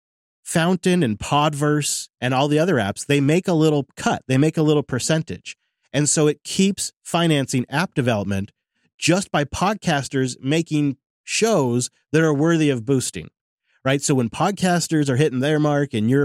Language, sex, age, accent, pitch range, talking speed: English, male, 30-49, American, 130-170 Hz, 165 wpm